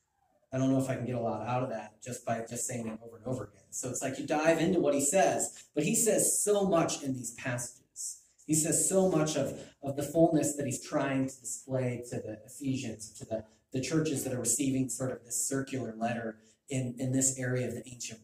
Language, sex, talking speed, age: English, male, 240 wpm, 30-49